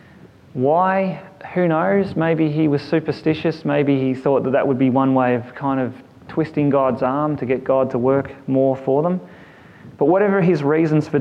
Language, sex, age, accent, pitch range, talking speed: English, male, 30-49, Australian, 135-180 Hz, 185 wpm